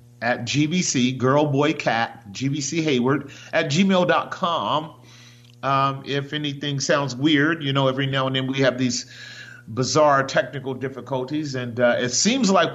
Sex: male